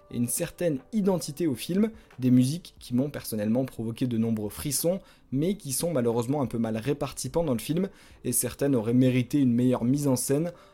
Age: 20-39